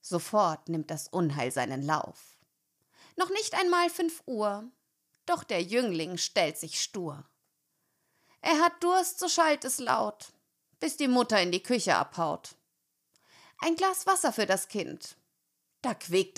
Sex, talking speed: female, 145 wpm